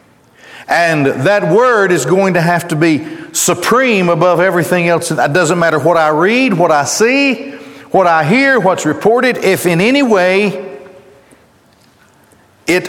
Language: English